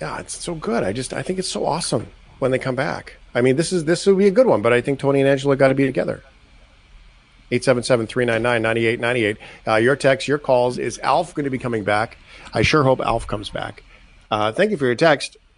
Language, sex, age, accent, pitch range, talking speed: English, male, 40-59, American, 95-130 Hz, 230 wpm